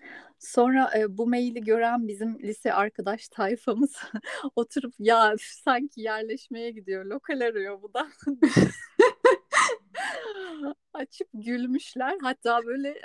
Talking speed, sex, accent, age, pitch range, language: 100 wpm, female, native, 30-49, 200-260 Hz, Turkish